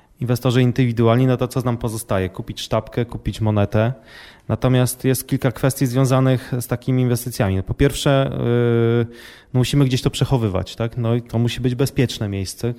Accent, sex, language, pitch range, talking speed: native, male, Polish, 110-130 Hz, 155 wpm